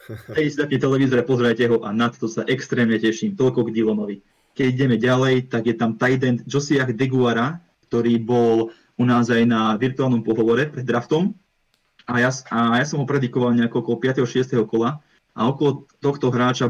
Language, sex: Czech, male